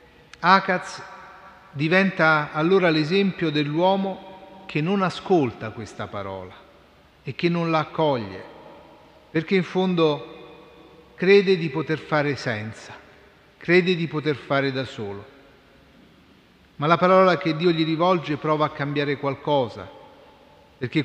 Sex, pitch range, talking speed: male, 135-170 Hz, 115 wpm